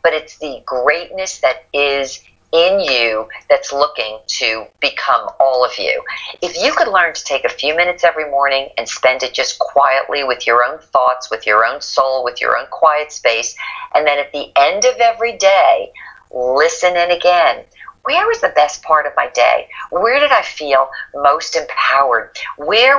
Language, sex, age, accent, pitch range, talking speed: English, female, 50-69, American, 145-240 Hz, 185 wpm